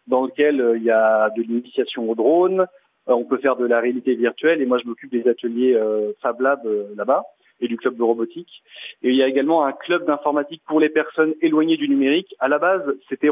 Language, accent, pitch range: French, French, 125-170 Hz